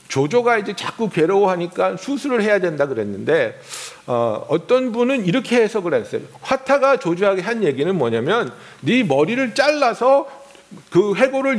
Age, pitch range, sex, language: 50-69, 180-275 Hz, male, Korean